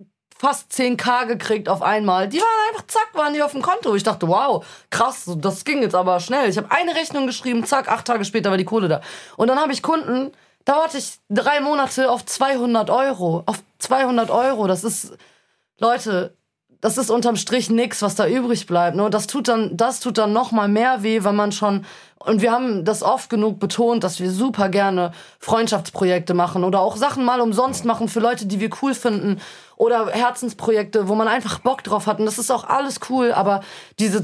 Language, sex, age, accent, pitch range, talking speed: German, female, 20-39, German, 195-250 Hz, 205 wpm